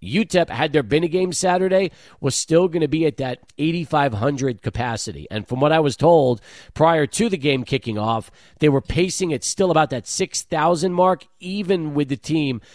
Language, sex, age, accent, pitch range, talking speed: English, male, 40-59, American, 105-150 Hz, 195 wpm